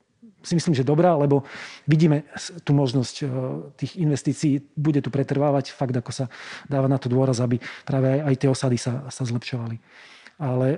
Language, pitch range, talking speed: Slovak, 130-155 Hz, 165 wpm